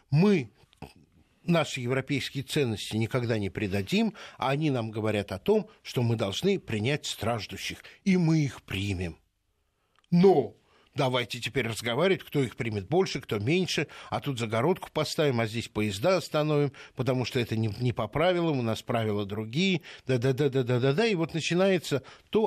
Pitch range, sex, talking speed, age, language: 105-155 Hz, male, 145 wpm, 60-79, Russian